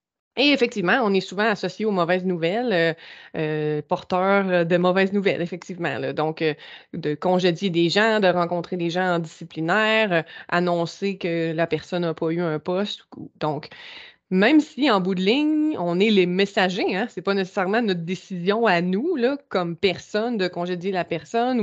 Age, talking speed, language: 20-39, 185 wpm, French